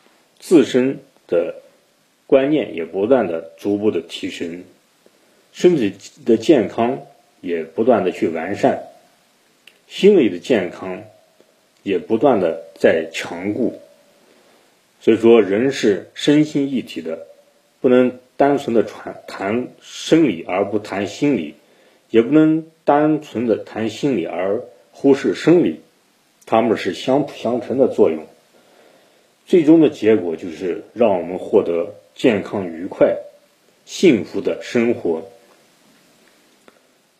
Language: Chinese